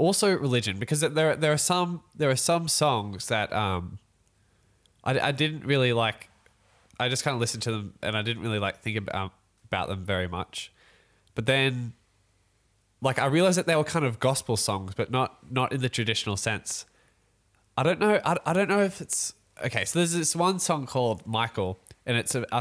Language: English